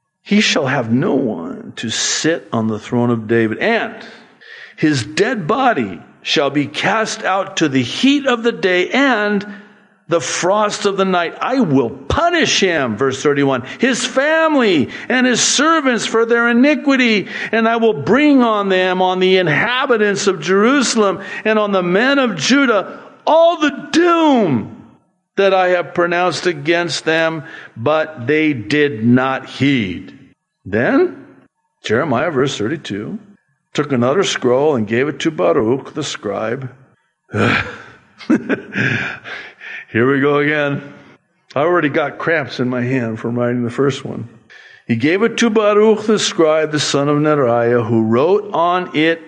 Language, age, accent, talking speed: English, 50-69, American, 150 wpm